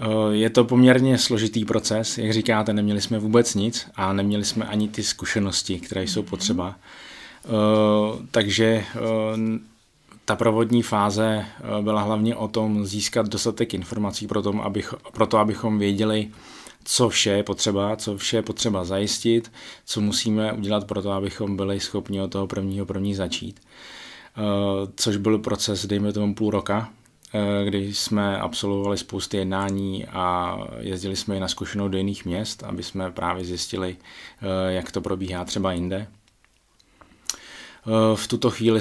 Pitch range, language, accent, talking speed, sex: 100-110 Hz, Czech, native, 140 wpm, male